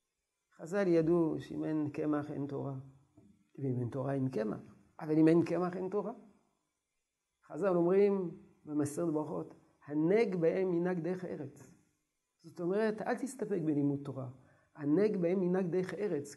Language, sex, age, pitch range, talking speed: Hebrew, male, 50-69, 150-205 Hz, 145 wpm